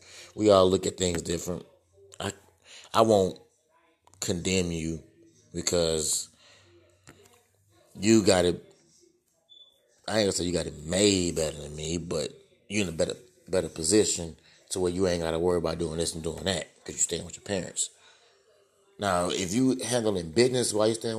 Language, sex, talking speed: English, male, 175 wpm